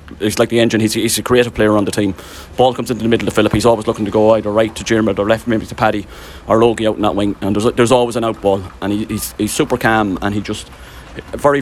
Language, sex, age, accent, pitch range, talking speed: English, male, 30-49, British, 100-115 Hz, 300 wpm